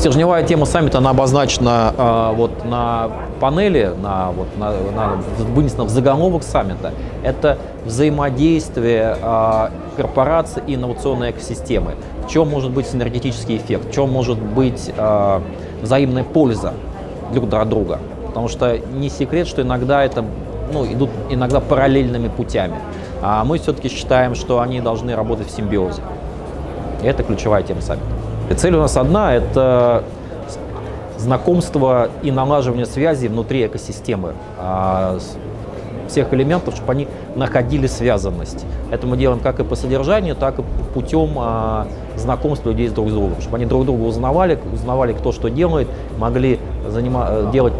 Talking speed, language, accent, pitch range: 130 wpm, Russian, native, 105-135 Hz